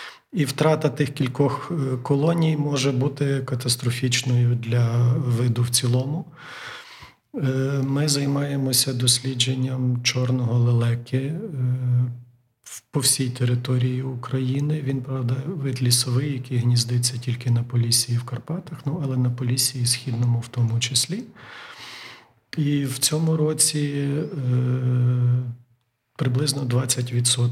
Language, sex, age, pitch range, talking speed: Ukrainian, male, 40-59, 120-135 Hz, 95 wpm